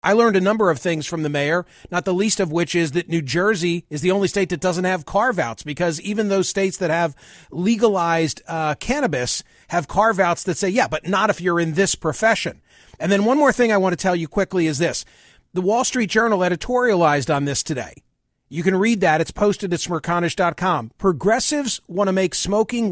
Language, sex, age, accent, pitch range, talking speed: English, male, 40-59, American, 165-205 Hz, 215 wpm